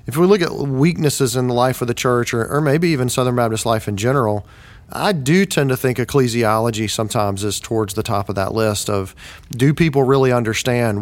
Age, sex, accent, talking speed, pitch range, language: 40-59, male, American, 215 wpm, 105-135 Hz, English